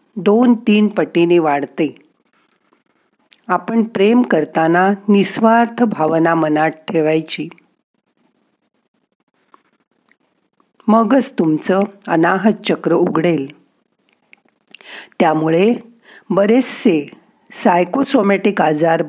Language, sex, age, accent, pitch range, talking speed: Marathi, female, 50-69, native, 165-225 Hz, 65 wpm